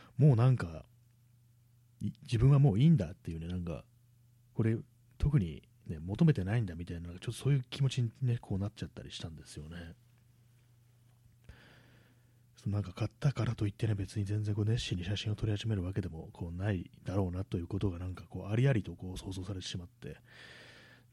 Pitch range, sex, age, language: 95-120 Hz, male, 30-49, Japanese